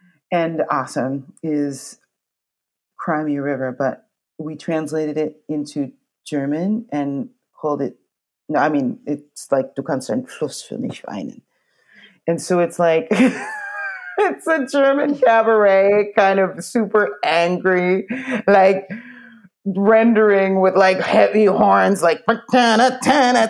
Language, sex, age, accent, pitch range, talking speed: English, female, 30-49, American, 150-220 Hz, 120 wpm